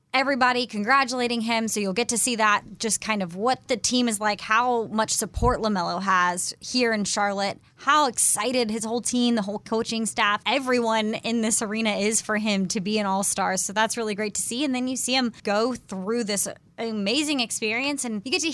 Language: English